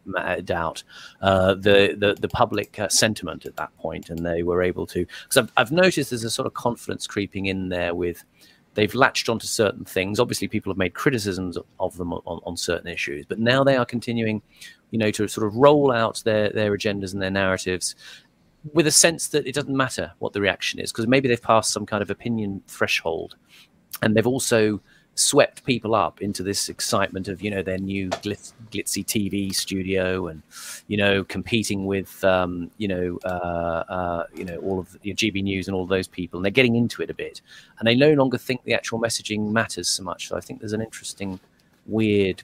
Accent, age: British, 30-49